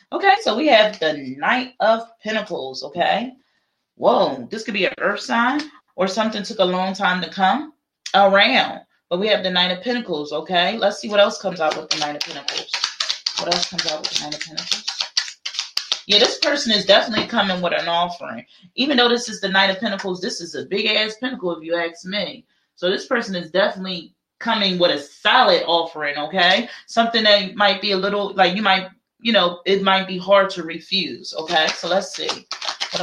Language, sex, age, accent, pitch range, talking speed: English, female, 30-49, American, 175-220 Hz, 205 wpm